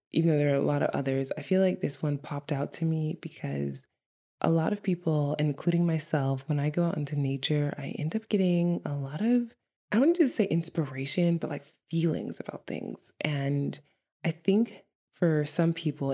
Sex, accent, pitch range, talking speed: female, American, 135-165 Hz, 200 wpm